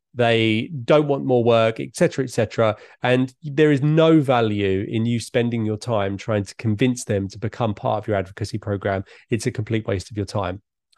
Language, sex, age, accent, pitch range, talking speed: English, male, 30-49, British, 110-145 Hz, 200 wpm